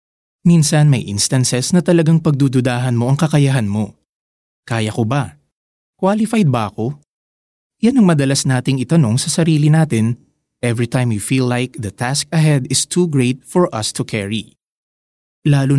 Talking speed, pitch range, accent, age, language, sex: 150 wpm, 120-160 Hz, native, 20-39, Filipino, male